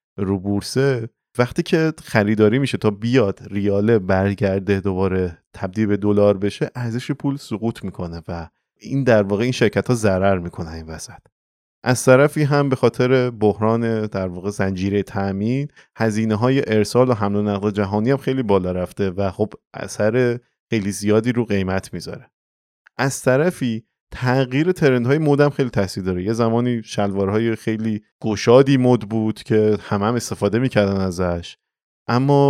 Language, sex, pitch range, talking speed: Persian, male, 100-125 Hz, 150 wpm